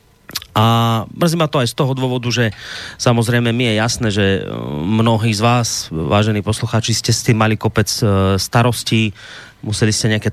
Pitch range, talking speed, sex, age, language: 105-120 Hz, 165 wpm, male, 30-49, Slovak